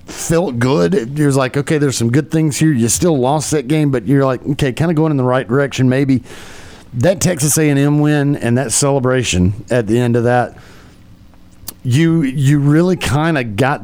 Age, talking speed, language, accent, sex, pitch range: 40-59, 200 wpm, English, American, male, 115-140 Hz